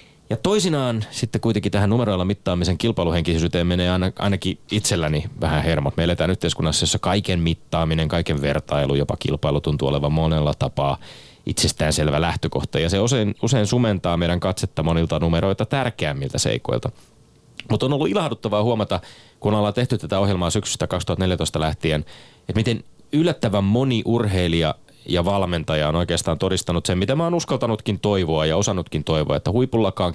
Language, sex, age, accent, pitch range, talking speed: Finnish, male, 30-49, native, 80-105 Hz, 145 wpm